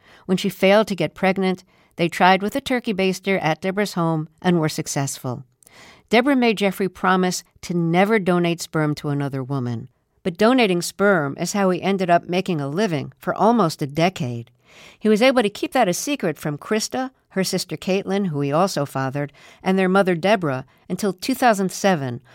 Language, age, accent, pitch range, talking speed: English, 60-79, American, 150-200 Hz, 180 wpm